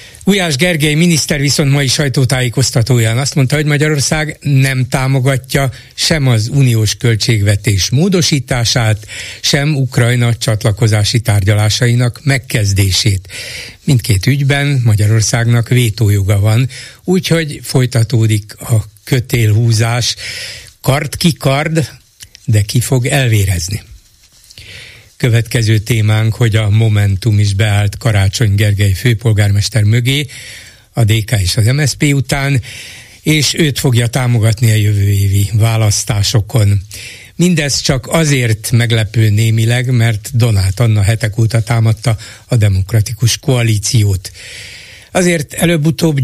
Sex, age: male, 60-79